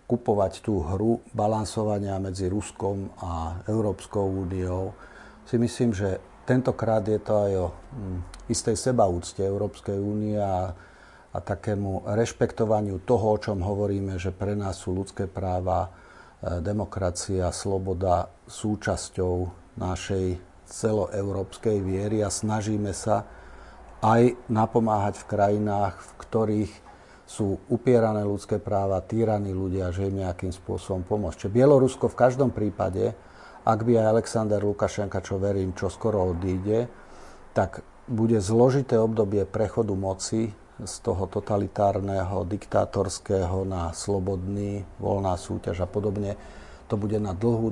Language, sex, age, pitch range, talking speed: Slovak, male, 40-59, 95-110 Hz, 120 wpm